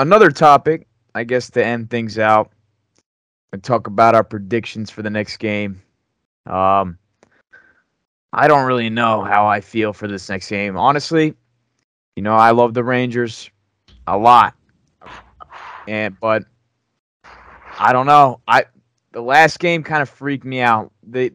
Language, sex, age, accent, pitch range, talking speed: English, male, 20-39, American, 105-135 Hz, 150 wpm